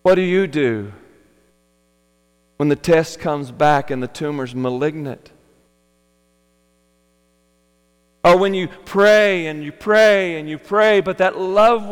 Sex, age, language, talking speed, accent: male, 40-59, English, 130 wpm, American